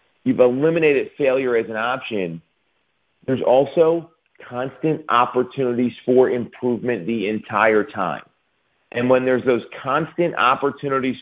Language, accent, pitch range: English, American, 120-150 Hz